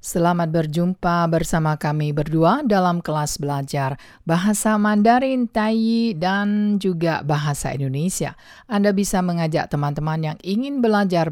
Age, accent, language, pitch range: 50-69, Indonesian, Chinese, 150-200 Hz